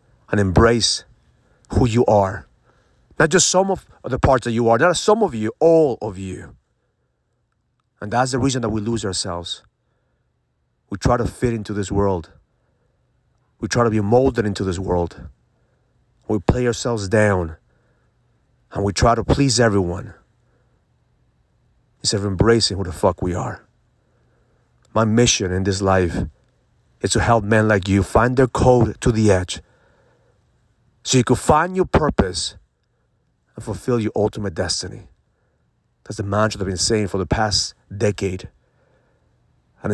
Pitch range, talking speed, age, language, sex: 95-125 Hz, 155 wpm, 40-59, English, male